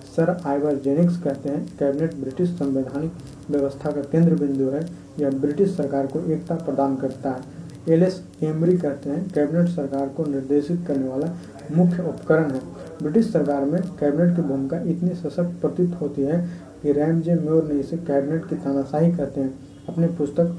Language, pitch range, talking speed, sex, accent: Hindi, 140-165 Hz, 115 wpm, male, native